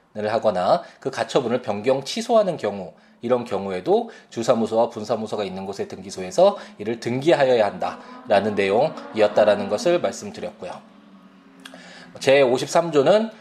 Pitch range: 105-165 Hz